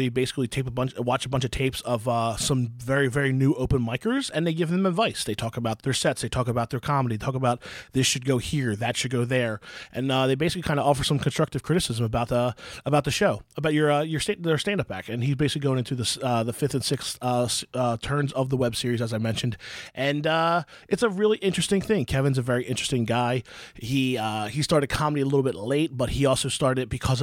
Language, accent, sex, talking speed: English, American, male, 250 wpm